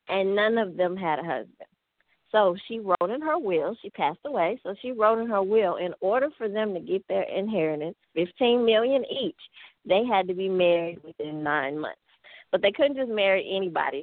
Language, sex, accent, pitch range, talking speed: English, female, American, 165-205 Hz, 195 wpm